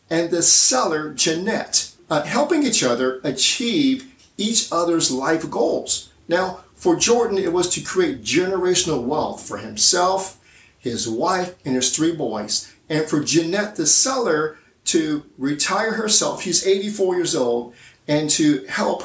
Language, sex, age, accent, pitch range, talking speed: English, male, 50-69, American, 150-210 Hz, 140 wpm